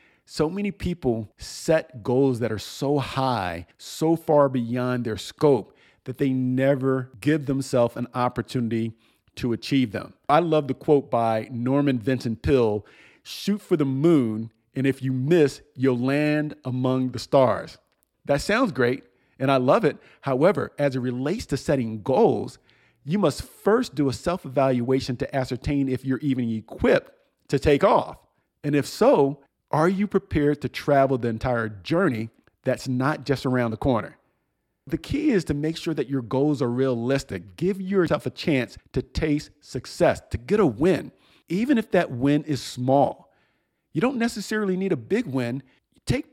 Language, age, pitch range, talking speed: English, 40-59, 125-150 Hz, 165 wpm